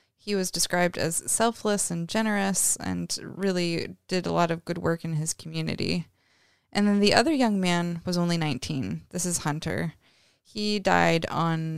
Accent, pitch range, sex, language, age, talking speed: American, 155-180 Hz, female, English, 20-39, 170 wpm